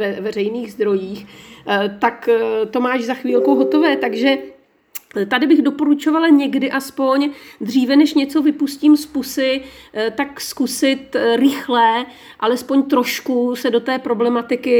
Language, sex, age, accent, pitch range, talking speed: Czech, female, 40-59, native, 210-275 Hz, 120 wpm